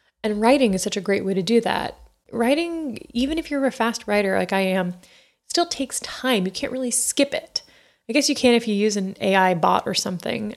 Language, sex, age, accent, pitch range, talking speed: English, female, 20-39, American, 195-235 Hz, 235 wpm